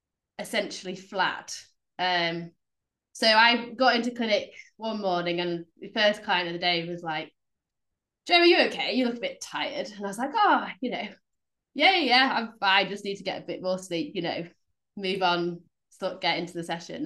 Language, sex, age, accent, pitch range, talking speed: English, female, 20-39, British, 170-200 Hz, 195 wpm